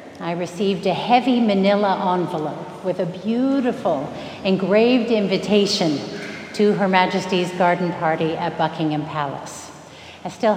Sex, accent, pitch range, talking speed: female, American, 175-235 Hz, 120 wpm